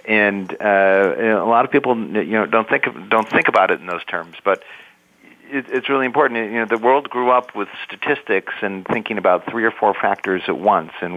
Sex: male